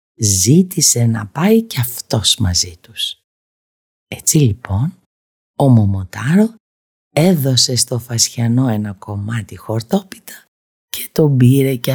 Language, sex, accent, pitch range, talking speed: Greek, female, native, 105-160 Hz, 105 wpm